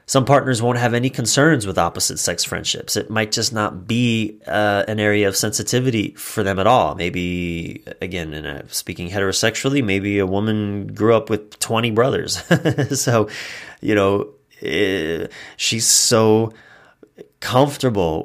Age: 30-49